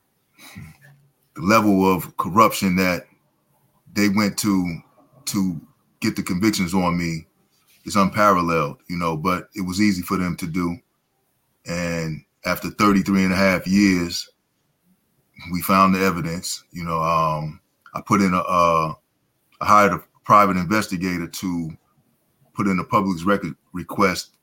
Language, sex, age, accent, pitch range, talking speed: English, male, 20-39, American, 85-105 Hz, 140 wpm